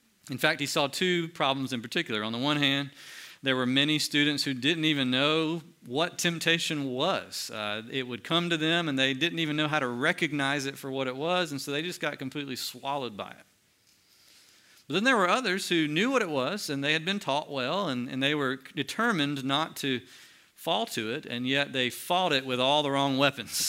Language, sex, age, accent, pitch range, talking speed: English, male, 40-59, American, 125-155 Hz, 220 wpm